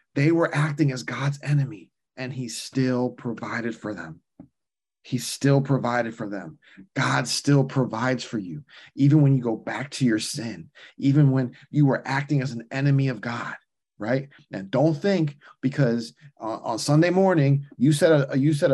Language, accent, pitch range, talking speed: English, American, 125-150 Hz, 175 wpm